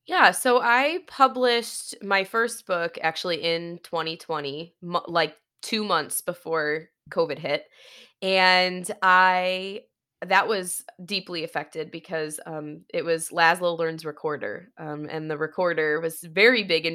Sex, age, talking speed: female, 20-39, 130 wpm